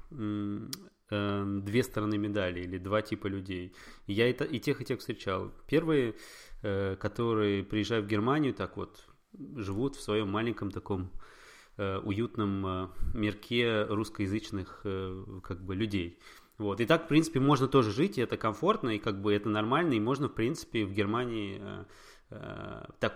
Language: Russian